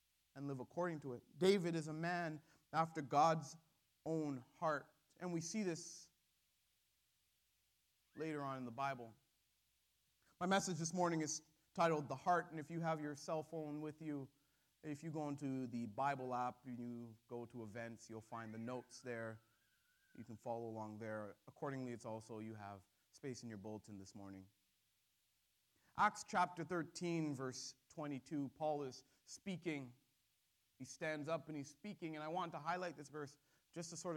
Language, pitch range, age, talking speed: English, 125-170 Hz, 30-49, 165 wpm